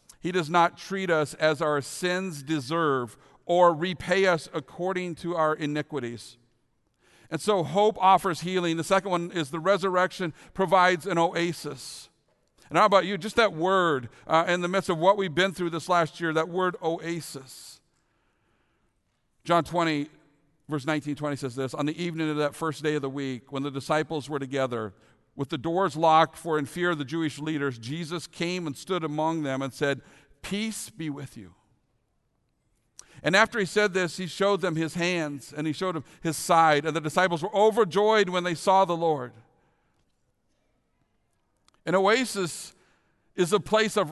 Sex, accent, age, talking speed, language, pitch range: male, American, 50-69, 175 wpm, English, 145-185 Hz